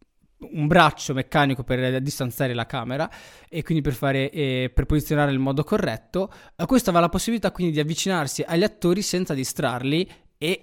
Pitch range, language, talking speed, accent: 145-180 Hz, Italian, 170 wpm, native